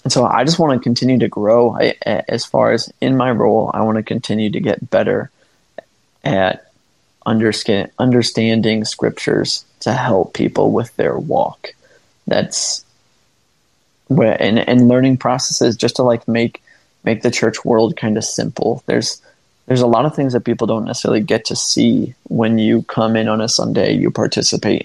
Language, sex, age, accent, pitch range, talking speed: English, male, 20-39, American, 110-120 Hz, 175 wpm